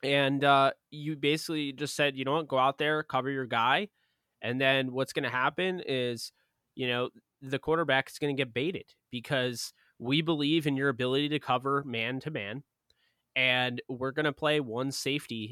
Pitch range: 120-140 Hz